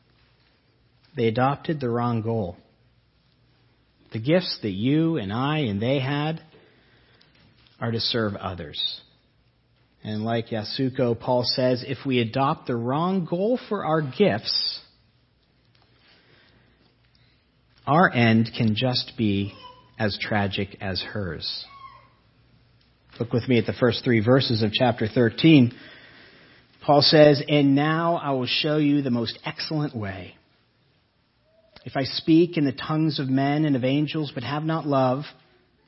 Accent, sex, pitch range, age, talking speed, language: American, male, 115-155 Hz, 50-69, 130 wpm, English